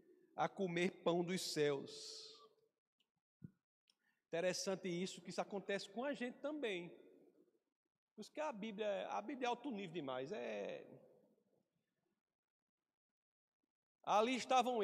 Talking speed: 115 wpm